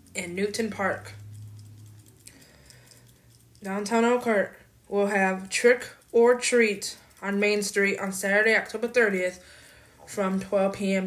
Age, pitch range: 20-39, 195-235 Hz